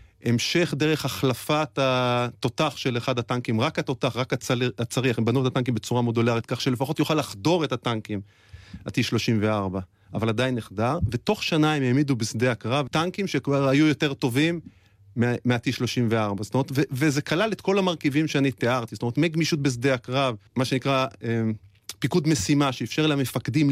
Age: 30-49